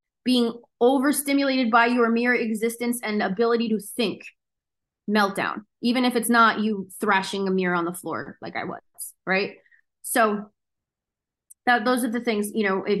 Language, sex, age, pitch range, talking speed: English, female, 20-39, 200-245 Hz, 160 wpm